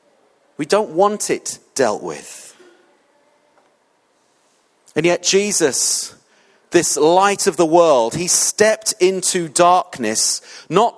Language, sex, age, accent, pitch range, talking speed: English, male, 40-59, British, 165-195 Hz, 105 wpm